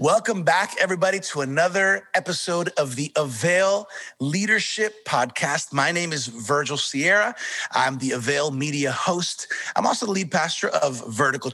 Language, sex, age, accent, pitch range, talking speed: English, male, 30-49, American, 135-180 Hz, 145 wpm